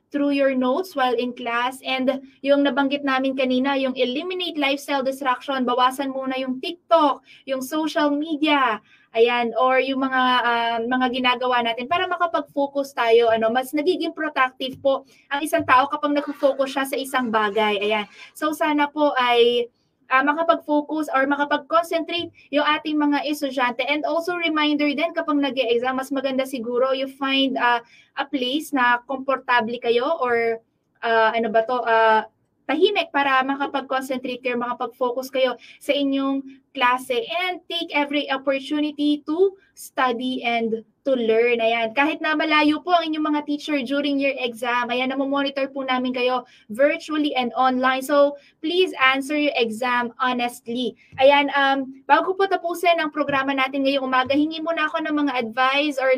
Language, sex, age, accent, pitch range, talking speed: Filipino, female, 20-39, native, 250-295 Hz, 155 wpm